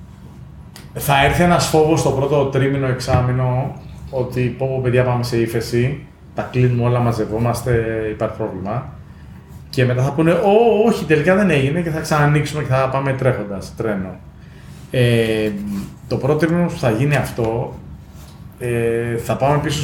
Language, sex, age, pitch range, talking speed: Greek, male, 30-49, 105-135 Hz, 145 wpm